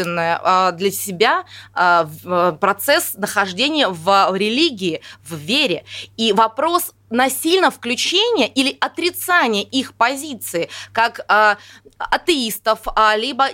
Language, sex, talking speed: Russian, female, 95 wpm